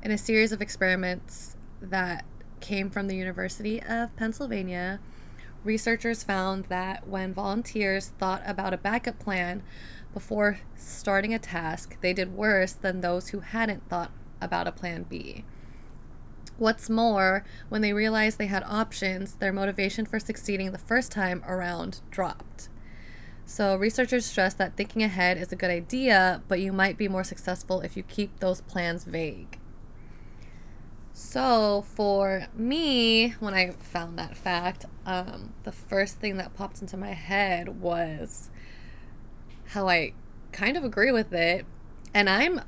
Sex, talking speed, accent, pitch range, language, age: female, 145 wpm, American, 175-210 Hz, English, 20-39